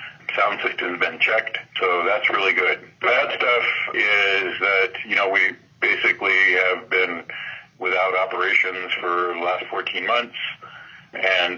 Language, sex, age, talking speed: English, male, 50-69, 140 wpm